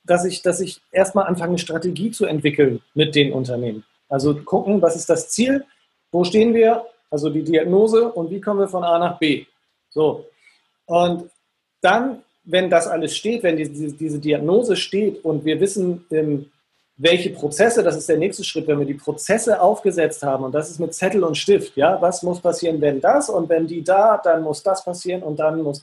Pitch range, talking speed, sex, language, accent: 155-190 Hz, 195 wpm, male, German, German